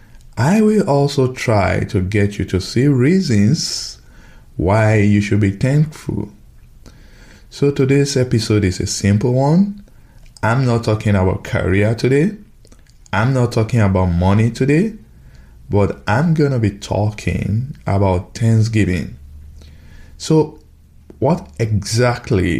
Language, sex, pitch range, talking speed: English, male, 90-115 Hz, 120 wpm